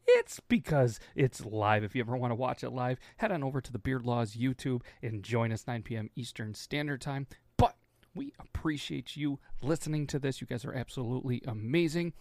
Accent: American